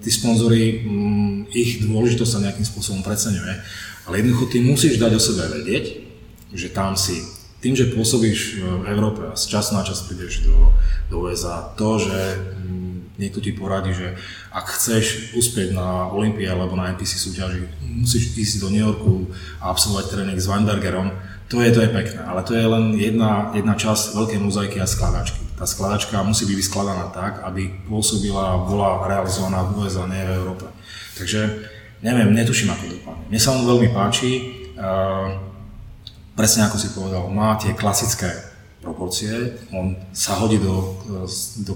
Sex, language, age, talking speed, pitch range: male, Czech, 20-39, 165 wpm, 95-110 Hz